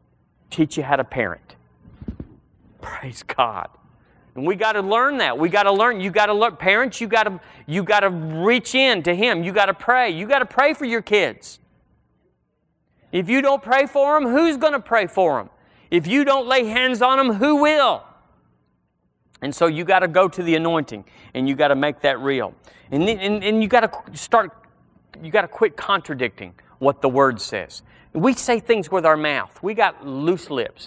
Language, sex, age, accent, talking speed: English, male, 40-59, American, 210 wpm